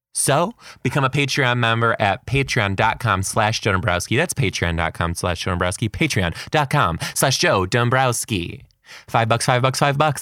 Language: English